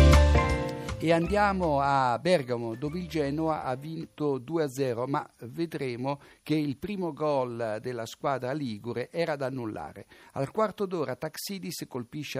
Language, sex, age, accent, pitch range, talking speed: Italian, male, 60-79, native, 120-165 Hz, 130 wpm